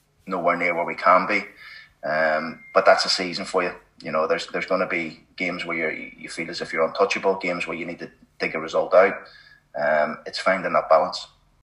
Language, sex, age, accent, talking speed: English, male, 30-49, British, 220 wpm